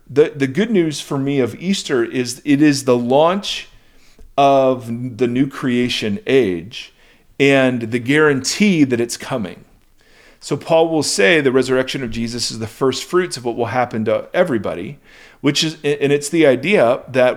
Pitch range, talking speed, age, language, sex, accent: 120-150 Hz, 170 wpm, 40-59, English, male, American